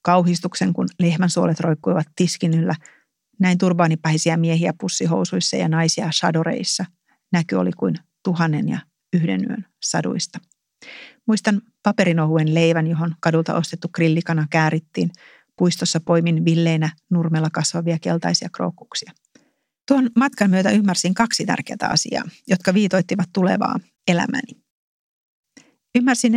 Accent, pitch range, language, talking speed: native, 170-200 Hz, Finnish, 110 wpm